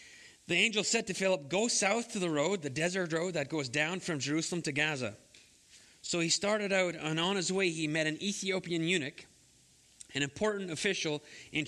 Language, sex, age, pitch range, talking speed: English, male, 30-49, 150-195 Hz, 190 wpm